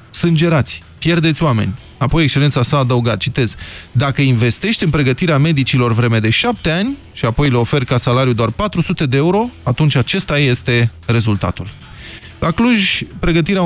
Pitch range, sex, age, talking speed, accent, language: 120-160 Hz, male, 20-39, 150 wpm, native, Romanian